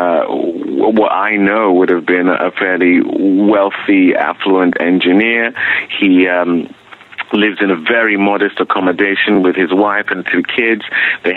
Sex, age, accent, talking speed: male, 30-49, British, 140 wpm